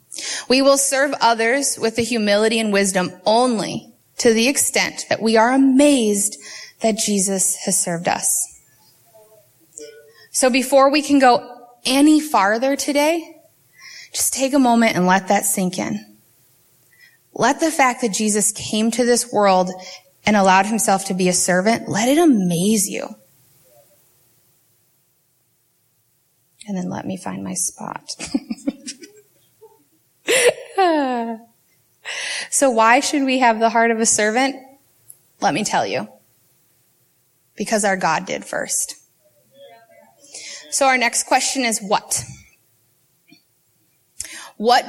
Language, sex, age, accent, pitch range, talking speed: English, female, 20-39, American, 185-265 Hz, 125 wpm